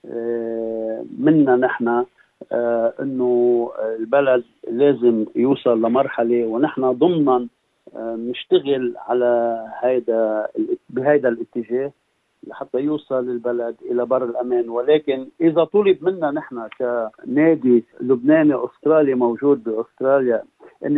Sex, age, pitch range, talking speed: male, 50-69, 120-155 Hz, 85 wpm